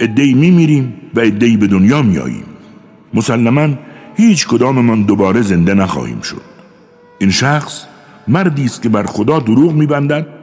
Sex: male